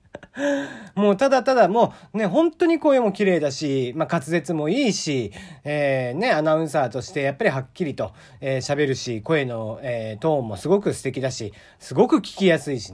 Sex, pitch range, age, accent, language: male, 140-210 Hz, 40-59, native, Japanese